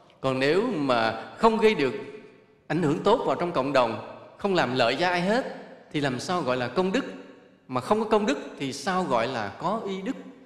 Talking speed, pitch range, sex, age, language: 220 wpm, 130-190 Hz, male, 20-39, English